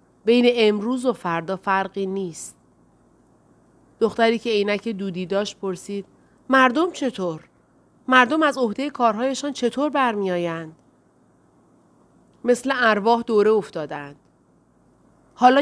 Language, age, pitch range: Persian, 30-49, 180-240 Hz